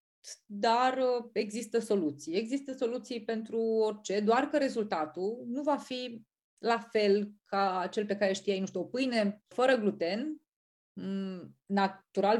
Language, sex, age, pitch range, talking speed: Romanian, female, 30-49, 185-230 Hz, 130 wpm